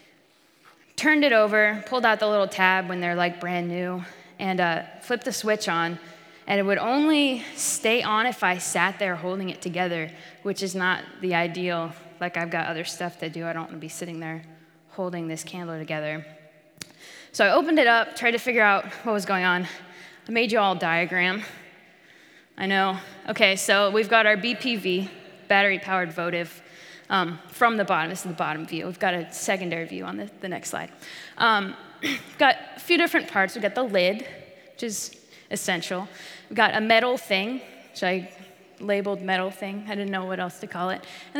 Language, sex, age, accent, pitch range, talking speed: English, female, 10-29, American, 175-220 Hz, 195 wpm